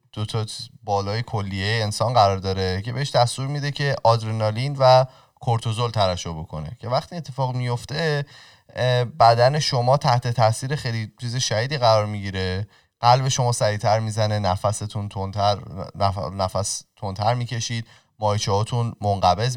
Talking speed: 130 wpm